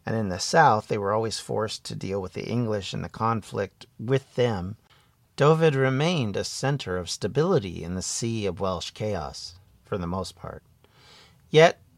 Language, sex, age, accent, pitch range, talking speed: English, male, 50-69, American, 95-135 Hz, 175 wpm